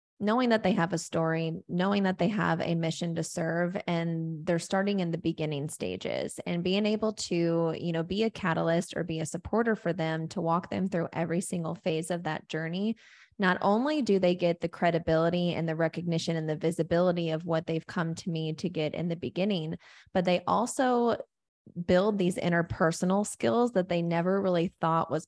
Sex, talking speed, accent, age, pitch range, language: female, 195 wpm, American, 20-39, 160-185 Hz, English